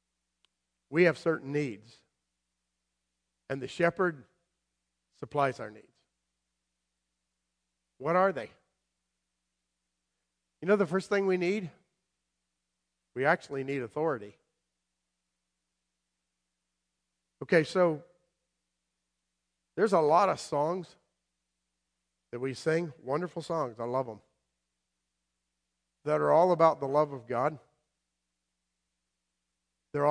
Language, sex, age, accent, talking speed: English, male, 50-69, American, 95 wpm